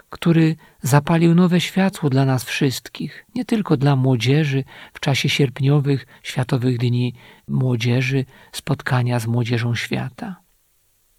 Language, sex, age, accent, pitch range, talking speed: Polish, male, 50-69, native, 130-160 Hz, 115 wpm